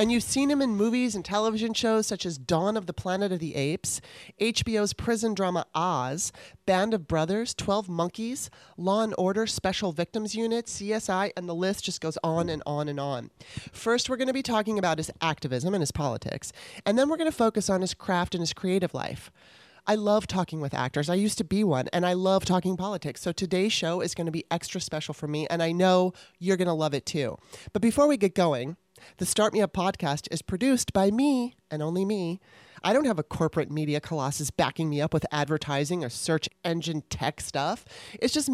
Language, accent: English, American